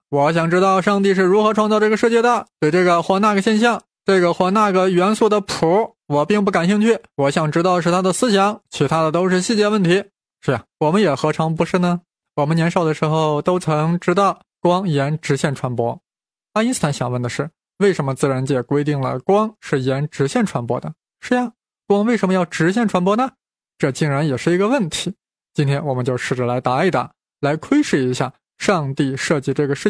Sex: male